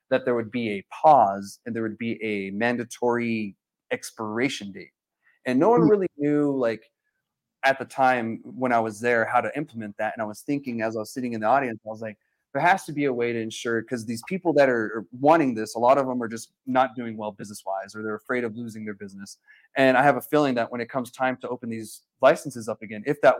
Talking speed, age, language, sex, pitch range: 245 wpm, 30-49, English, male, 110-135 Hz